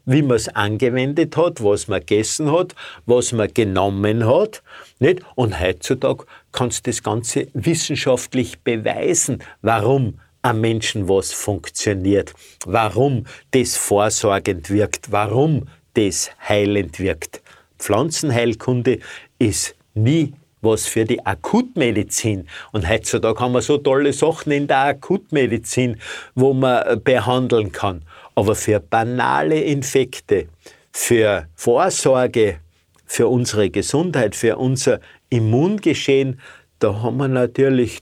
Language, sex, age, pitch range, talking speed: German, male, 50-69, 105-135 Hz, 115 wpm